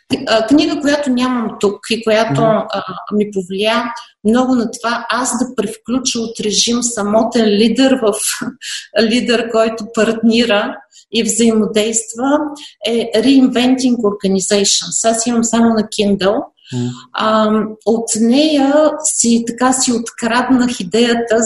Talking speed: 115 wpm